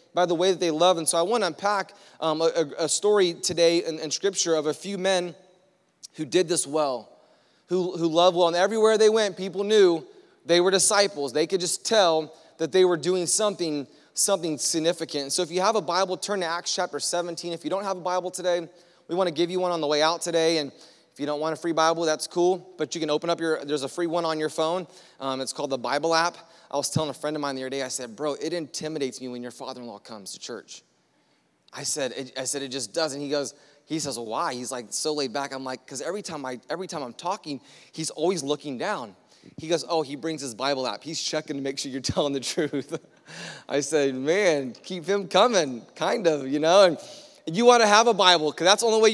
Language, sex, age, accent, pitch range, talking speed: English, male, 30-49, American, 145-180 Hz, 245 wpm